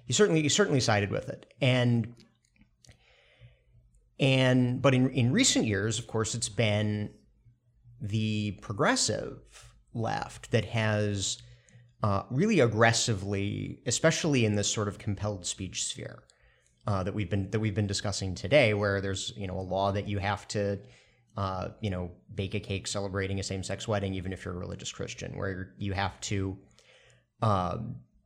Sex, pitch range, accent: male, 100-120 Hz, American